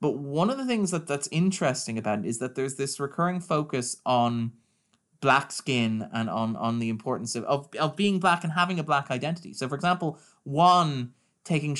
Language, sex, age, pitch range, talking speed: English, male, 20-39, 125-165 Hz, 200 wpm